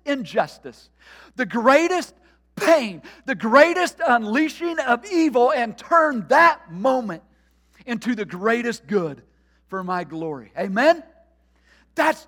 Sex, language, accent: male, English, American